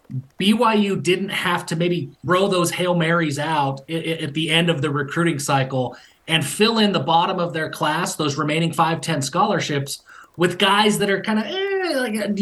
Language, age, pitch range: English, 30-49, 150-190 Hz